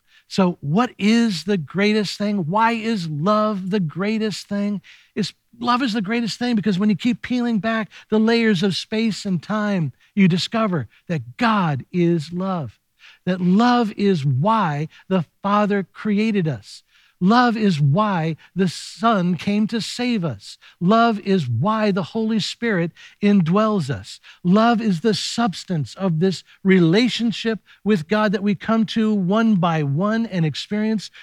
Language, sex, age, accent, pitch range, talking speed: English, male, 60-79, American, 165-220 Hz, 150 wpm